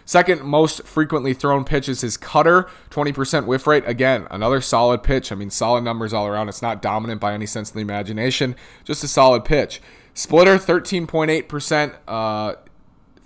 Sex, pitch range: male, 105-135 Hz